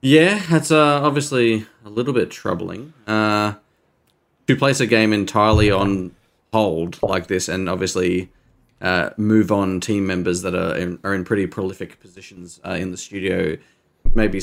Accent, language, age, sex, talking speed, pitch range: Australian, English, 20-39, male, 160 wpm, 95-110 Hz